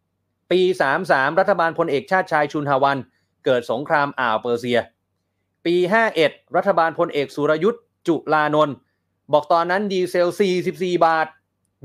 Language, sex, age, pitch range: Thai, male, 20-39, 110-170 Hz